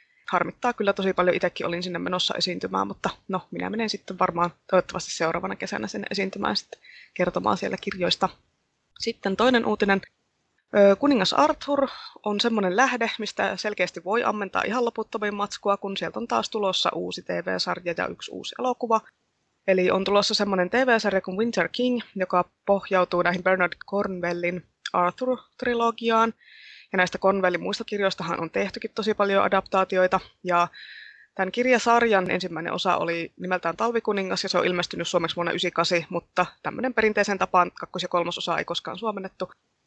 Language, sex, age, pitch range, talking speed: Finnish, female, 20-39, 180-220 Hz, 150 wpm